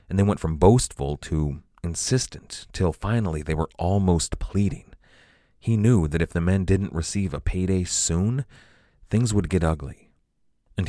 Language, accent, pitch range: English, American, 80-100 Hz